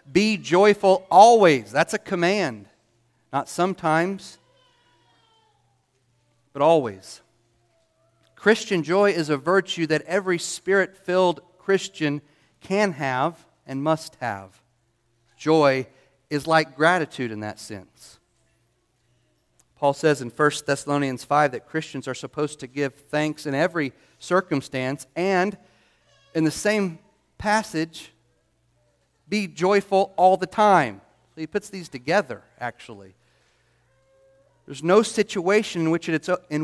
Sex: male